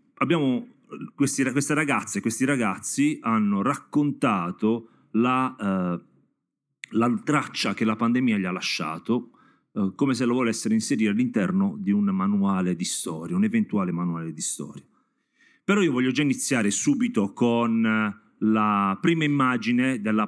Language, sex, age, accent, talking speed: Italian, male, 40-59, native, 135 wpm